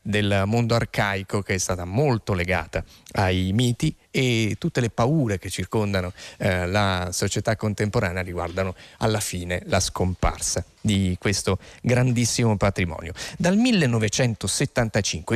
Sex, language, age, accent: male, Italian, 30-49, native